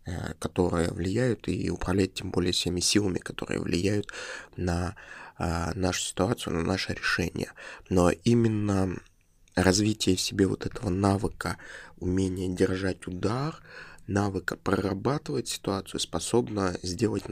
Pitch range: 90-105 Hz